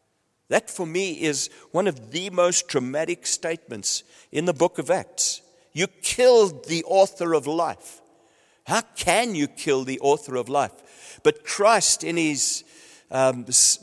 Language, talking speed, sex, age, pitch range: English, 150 wpm, male, 60-79, 140-220 Hz